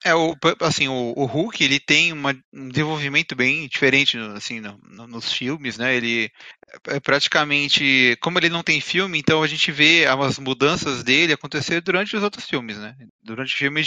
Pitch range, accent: 130-170 Hz, Brazilian